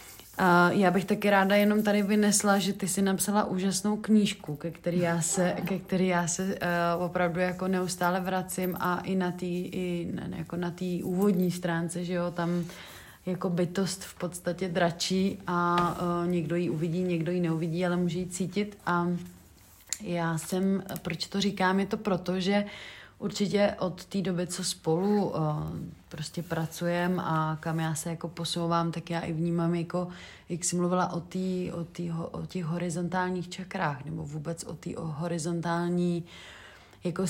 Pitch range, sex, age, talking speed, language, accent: 170-185 Hz, female, 30-49, 155 wpm, Czech, native